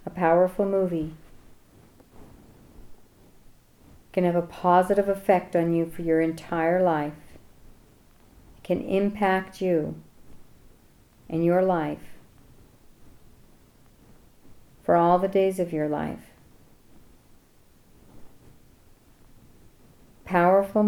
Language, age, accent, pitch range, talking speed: English, 40-59, American, 165-190 Hz, 80 wpm